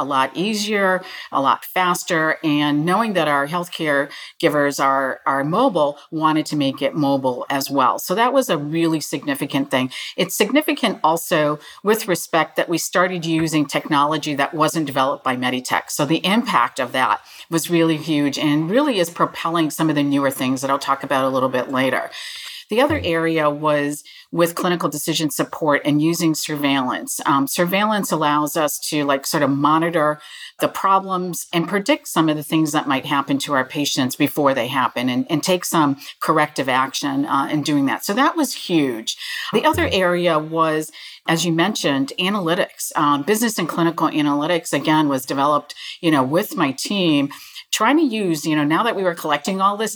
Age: 40-59